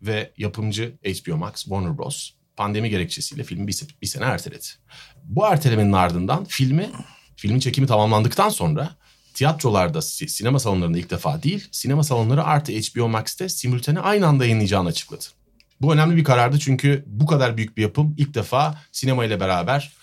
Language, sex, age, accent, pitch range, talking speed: Turkish, male, 40-59, native, 115-150 Hz, 150 wpm